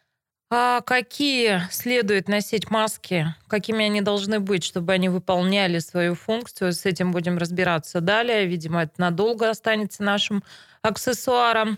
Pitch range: 175-220 Hz